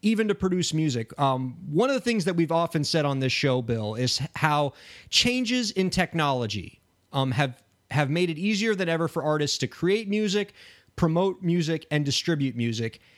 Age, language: 30-49, English